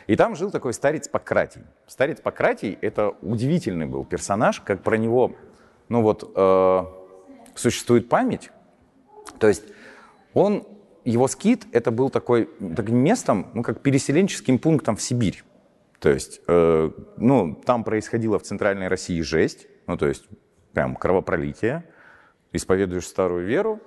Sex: male